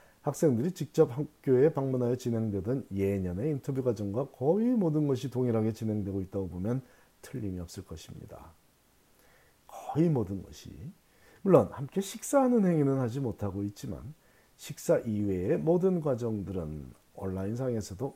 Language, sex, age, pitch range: Korean, male, 40-59, 100-140 Hz